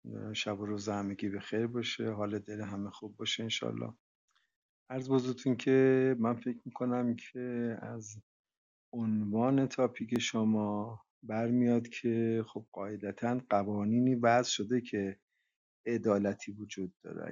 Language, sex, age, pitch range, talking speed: Persian, male, 50-69, 105-120 Hz, 120 wpm